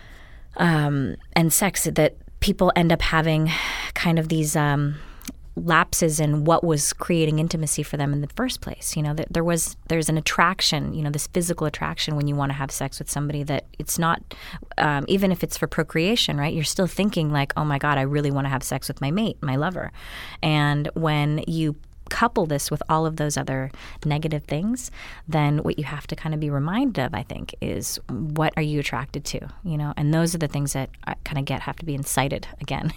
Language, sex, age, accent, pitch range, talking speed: English, female, 20-39, American, 145-170 Hz, 215 wpm